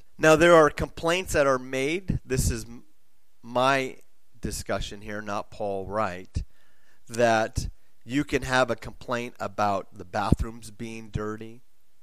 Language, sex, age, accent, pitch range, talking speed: English, male, 30-49, American, 105-140 Hz, 130 wpm